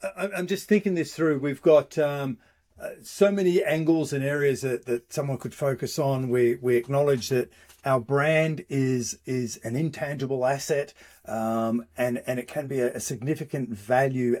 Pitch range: 115-135 Hz